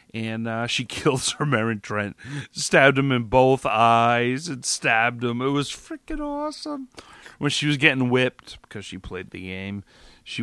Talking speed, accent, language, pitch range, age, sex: 175 wpm, American, English, 95-115 Hz, 40-59, male